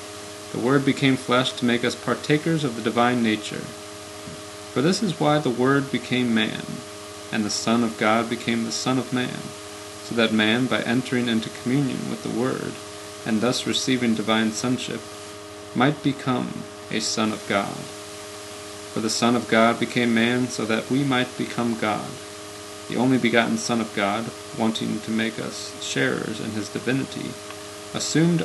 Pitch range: 105-125 Hz